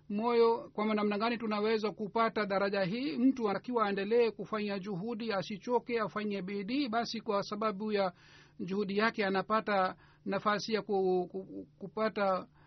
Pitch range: 200-230 Hz